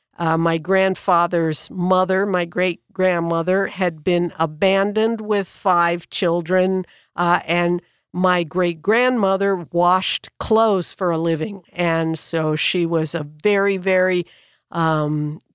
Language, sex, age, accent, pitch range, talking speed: English, female, 50-69, American, 165-195 Hz, 115 wpm